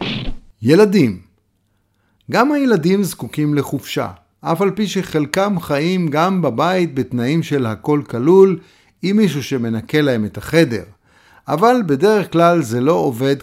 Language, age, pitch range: Hebrew, 50-69, 120-175 Hz